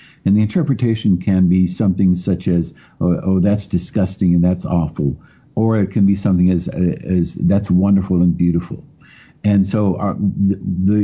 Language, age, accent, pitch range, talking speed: English, 60-79, American, 90-105 Hz, 170 wpm